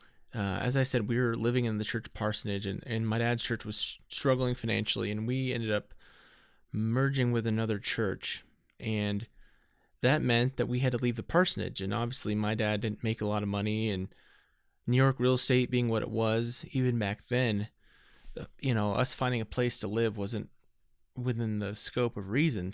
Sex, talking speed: male, 195 wpm